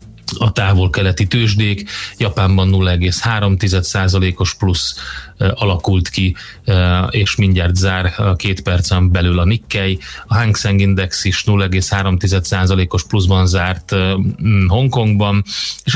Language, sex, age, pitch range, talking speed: Hungarian, male, 30-49, 95-105 Hz, 100 wpm